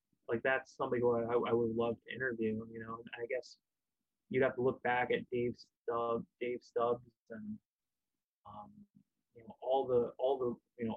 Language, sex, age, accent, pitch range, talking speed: English, male, 20-39, American, 115-125 Hz, 185 wpm